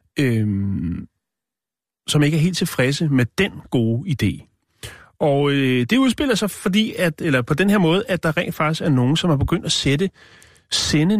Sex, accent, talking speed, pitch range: male, native, 165 wpm, 120-155 Hz